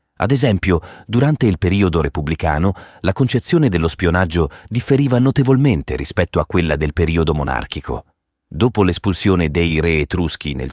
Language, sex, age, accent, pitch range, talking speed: Italian, male, 30-49, native, 75-100 Hz, 135 wpm